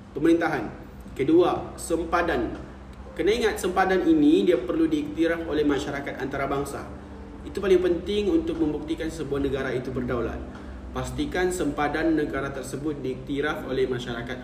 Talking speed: 120 wpm